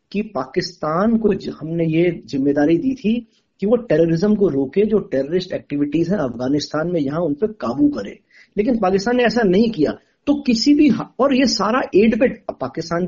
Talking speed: 185 wpm